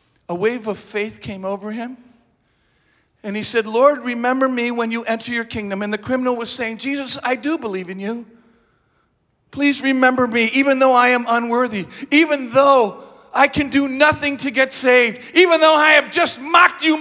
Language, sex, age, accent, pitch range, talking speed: English, male, 50-69, American, 230-315 Hz, 185 wpm